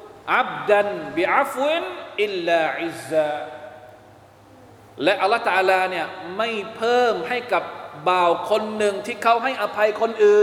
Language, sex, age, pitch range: Thai, male, 20-39, 155-210 Hz